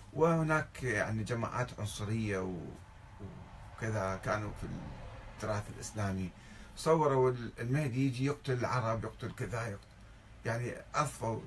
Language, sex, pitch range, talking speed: Arabic, male, 100-130 Hz, 95 wpm